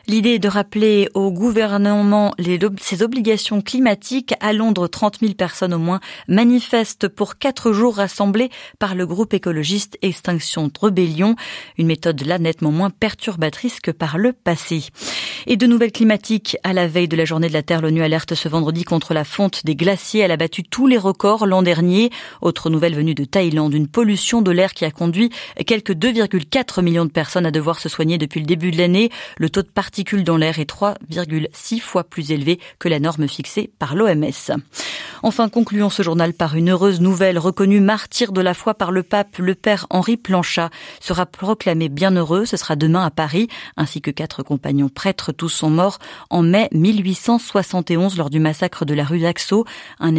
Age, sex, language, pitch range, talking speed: 30-49, female, French, 165-210 Hz, 190 wpm